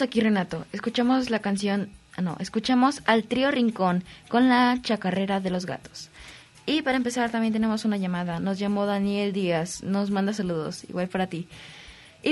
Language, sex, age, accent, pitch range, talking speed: Spanish, female, 20-39, Mexican, 170-220 Hz, 165 wpm